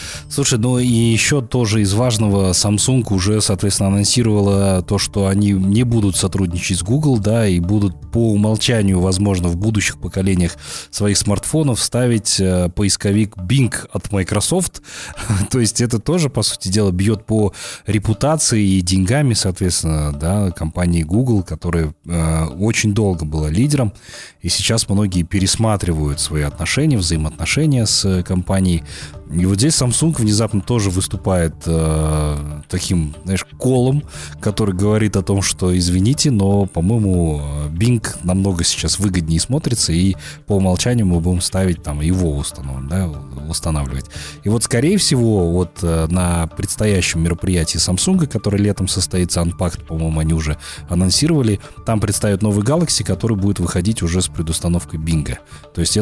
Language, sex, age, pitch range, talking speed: Russian, male, 30-49, 85-110 Hz, 140 wpm